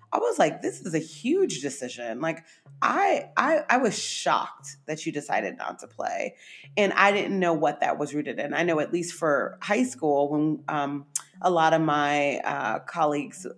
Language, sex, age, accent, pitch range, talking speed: English, female, 30-49, American, 135-175 Hz, 195 wpm